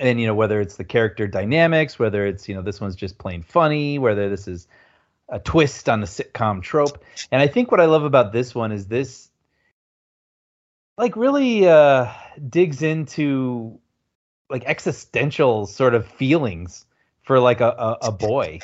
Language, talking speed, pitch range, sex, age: English, 170 wpm, 100-135 Hz, male, 30-49